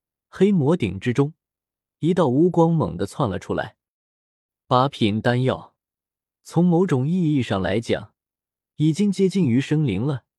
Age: 20-39